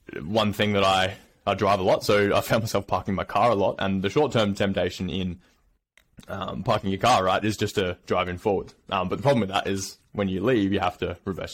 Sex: male